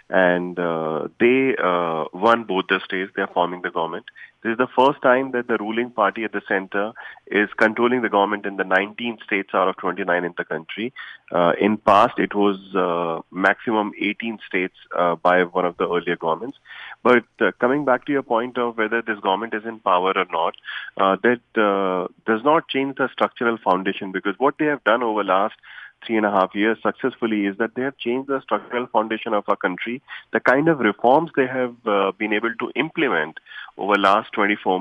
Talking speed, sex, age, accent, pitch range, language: 205 wpm, male, 30-49, Indian, 95-125 Hz, English